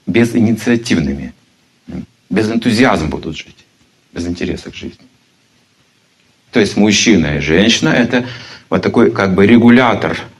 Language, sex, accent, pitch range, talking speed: Russian, male, native, 85-120 Hz, 125 wpm